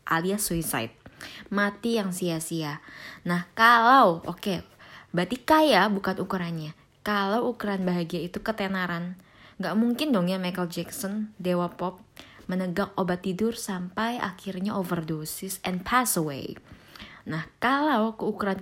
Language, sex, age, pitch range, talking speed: Indonesian, female, 20-39, 170-220 Hz, 120 wpm